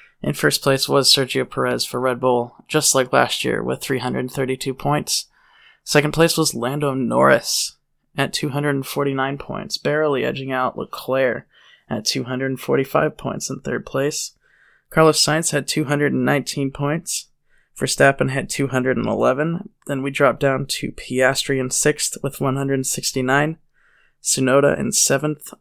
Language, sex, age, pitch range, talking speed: English, male, 20-39, 130-150 Hz, 130 wpm